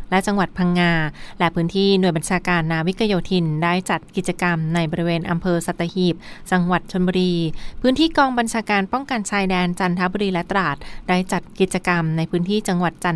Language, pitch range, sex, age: Thai, 170-195 Hz, female, 20-39